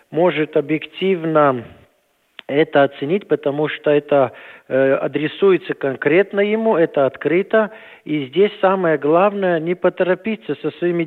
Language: Russian